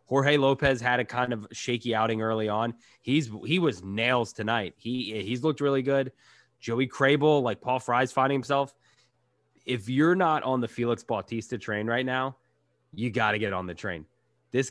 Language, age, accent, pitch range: English, 20-39, American, 110-140 Hz